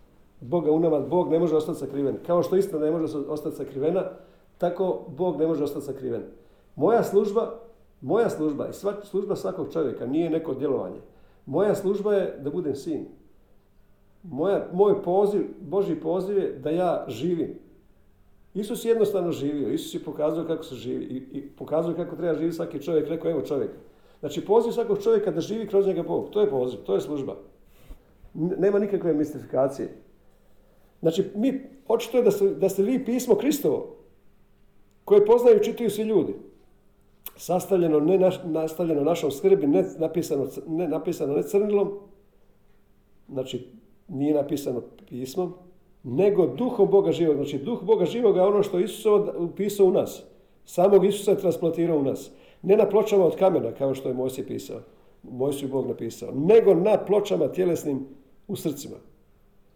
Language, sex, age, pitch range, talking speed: Croatian, male, 50-69, 150-205 Hz, 155 wpm